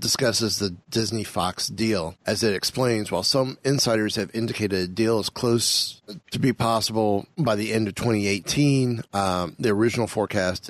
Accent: American